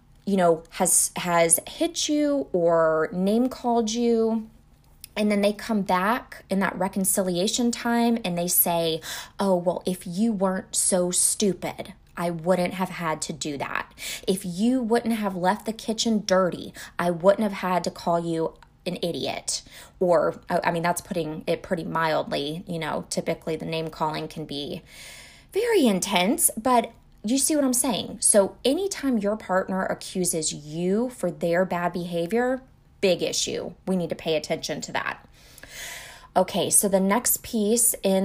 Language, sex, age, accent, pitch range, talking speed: English, female, 20-39, American, 175-235 Hz, 160 wpm